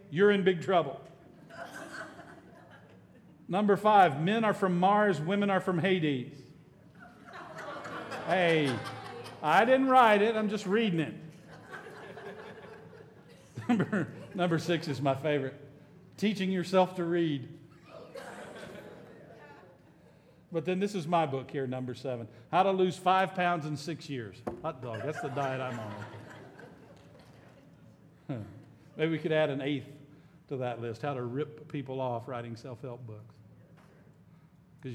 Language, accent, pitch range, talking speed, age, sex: English, American, 135-175 Hz, 125 wpm, 50-69, male